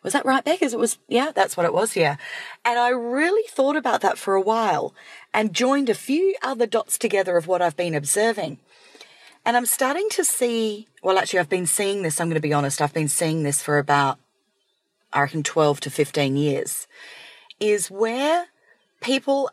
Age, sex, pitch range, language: 40-59, female, 165-235 Hz, English